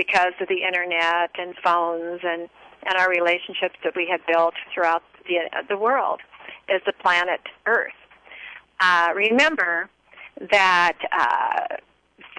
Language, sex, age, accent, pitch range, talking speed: English, female, 40-59, American, 175-215 Hz, 125 wpm